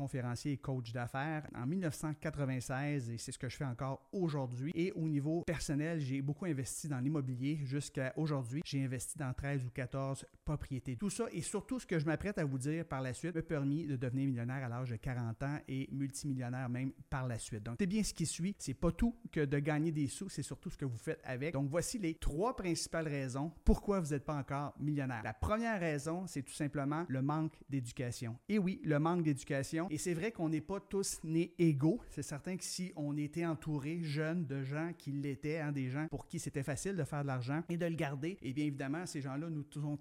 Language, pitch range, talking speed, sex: French, 135-165 Hz, 230 wpm, male